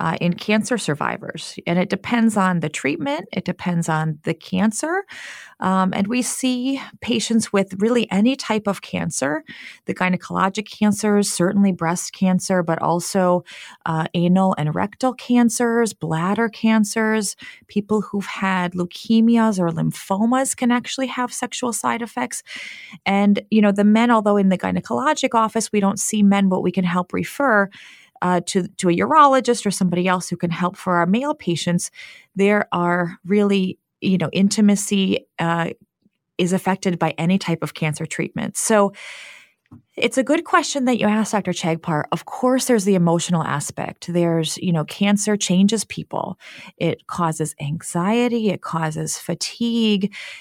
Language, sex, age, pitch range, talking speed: English, female, 30-49, 175-225 Hz, 155 wpm